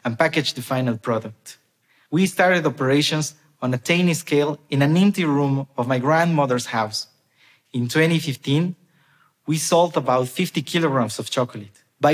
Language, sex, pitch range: Korean, male, 130-175 Hz